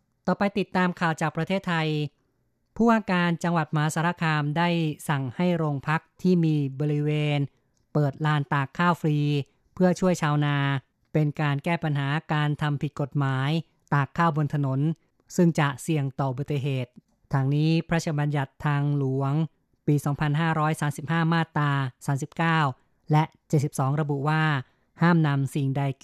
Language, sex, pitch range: Thai, female, 140-160 Hz